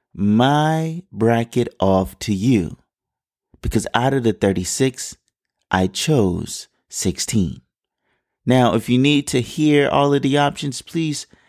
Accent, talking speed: American, 125 wpm